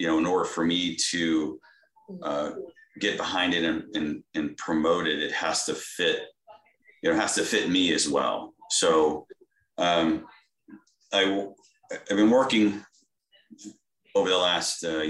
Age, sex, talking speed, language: 30-49, male, 160 wpm, English